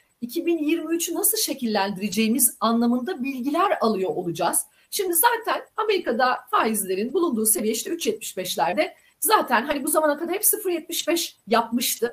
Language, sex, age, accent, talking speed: Turkish, female, 40-59, native, 115 wpm